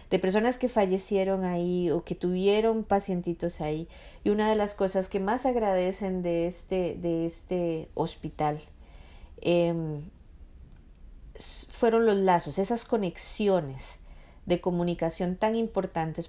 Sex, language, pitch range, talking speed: female, Spanish, 160-215 Hz, 120 wpm